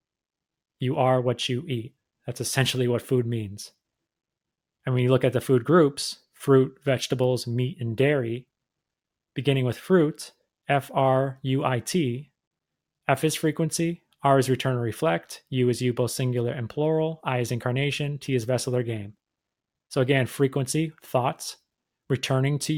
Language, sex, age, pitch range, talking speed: English, male, 30-49, 125-145 Hz, 150 wpm